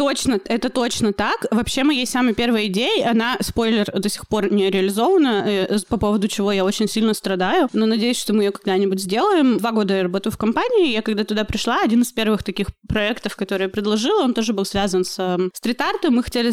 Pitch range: 190-230 Hz